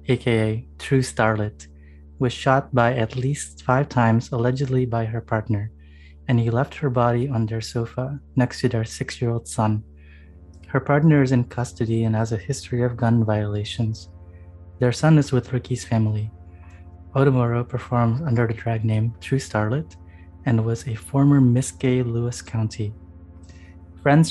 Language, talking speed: English, 155 wpm